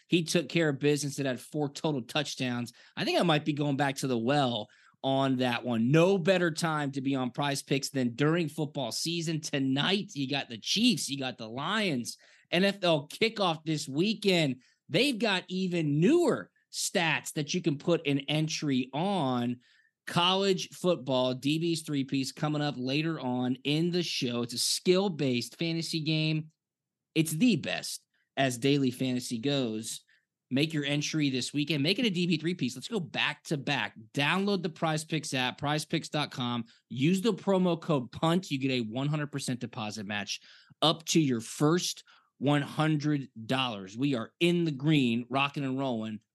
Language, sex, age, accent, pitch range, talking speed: English, male, 20-39, American, 130-165 Hz, 165 wpm